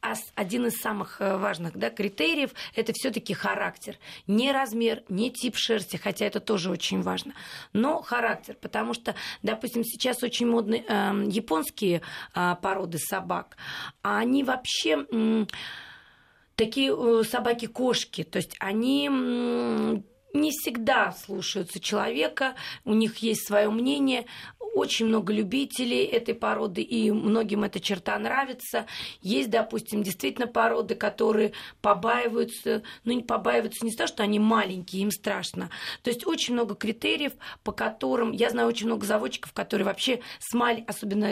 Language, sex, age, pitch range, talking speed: Russian, female, 30-49, 205-240 Hz, 140 wpm